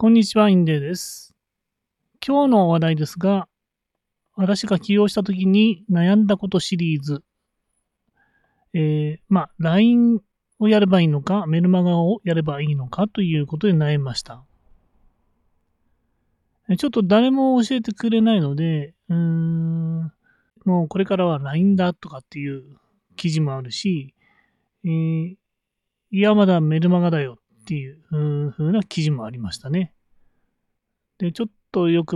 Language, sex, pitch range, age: Japanese, male, 150-205 Hz, 30-49